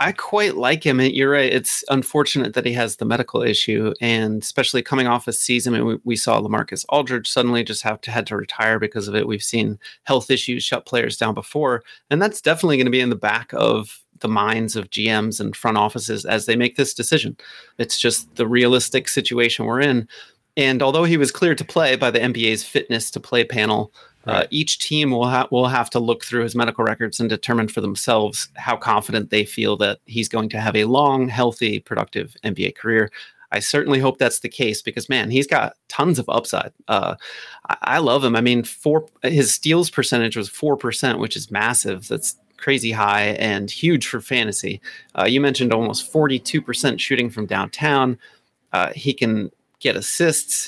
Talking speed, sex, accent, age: 200 wpm, male, American, 30-49